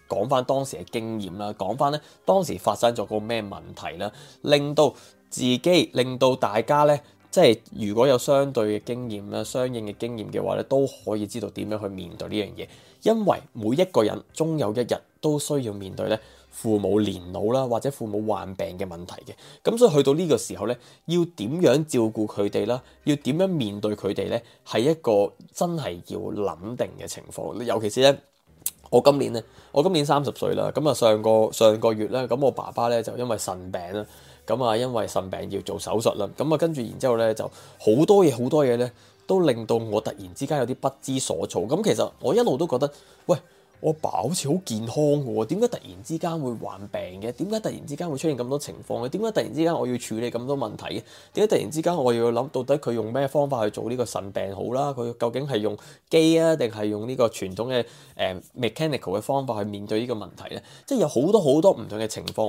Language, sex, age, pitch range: Chinese, male, 20-39, 105-145 Hz